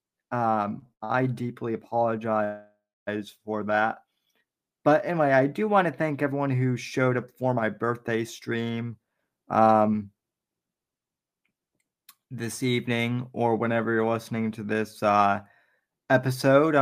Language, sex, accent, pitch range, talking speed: English, male, American, 110-135 Hz, 115 wpm